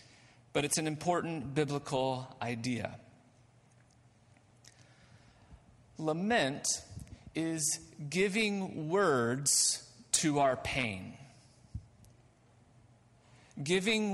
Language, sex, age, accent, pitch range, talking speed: English, male, 40-59, American, 120-180 Hz, 60 wpm